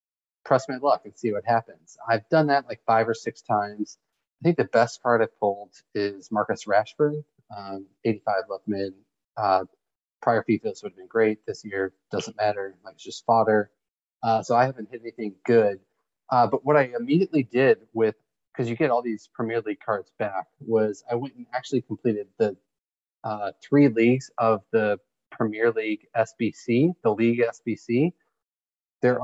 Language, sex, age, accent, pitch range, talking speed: English, male, 30-49, American, 105-125 Hz, 175 wpm